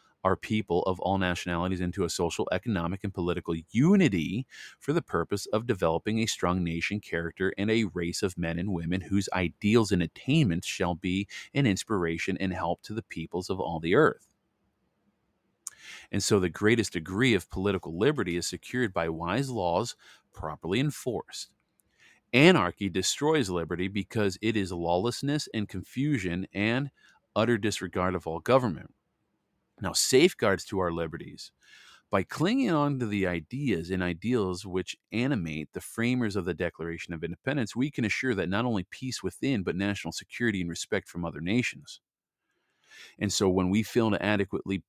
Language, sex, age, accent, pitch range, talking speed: English, male, 40-59, American, 85-110 Hz, 160 wpm